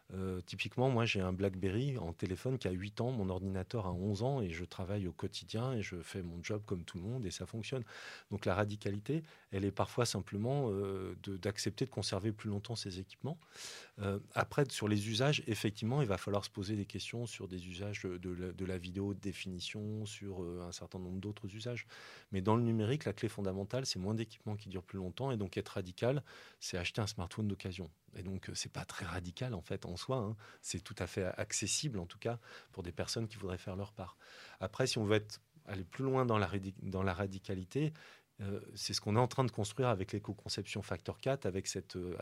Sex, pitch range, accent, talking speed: male, 95-115 Hz, French, 230 wpm